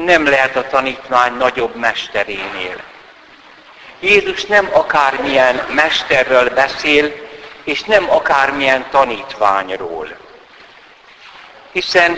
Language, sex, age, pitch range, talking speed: Hungarian, male, 60-79, 130-180 Hz, 80 wpm